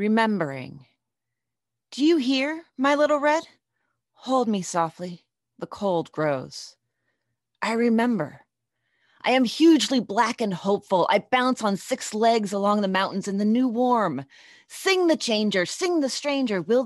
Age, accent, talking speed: 30-49, American, 140 wpm